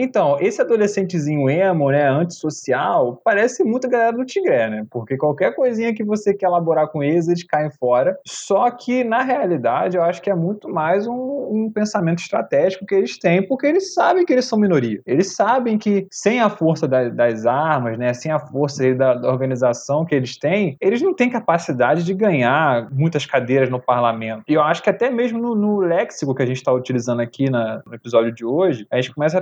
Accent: Brazilian